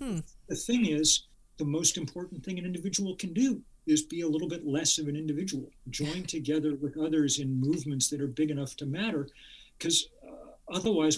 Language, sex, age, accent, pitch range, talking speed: English, male, 50-69, American, 145-190 Hz, 180 wpm